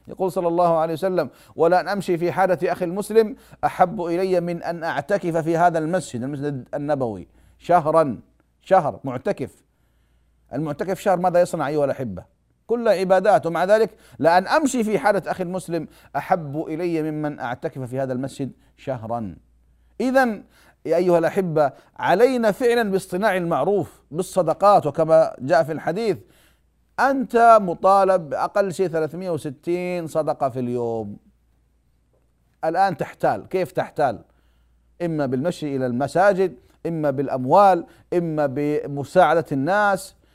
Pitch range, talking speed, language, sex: 125-185 Hz, 120 wpm, Arabic, male